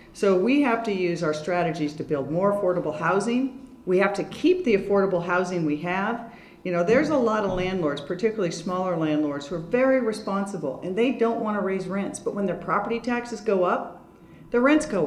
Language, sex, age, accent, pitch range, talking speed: English, female, 40-59, American, 170-230 Hz, 205 wpm